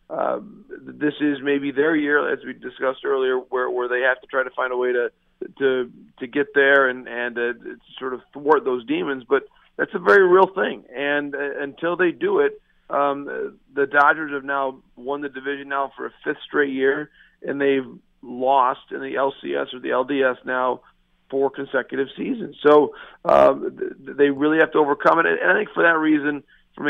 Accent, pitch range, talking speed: American, 130-155 Hz, 195 wpm